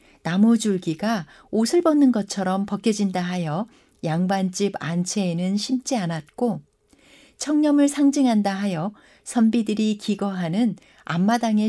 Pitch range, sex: 190-250 Hz, female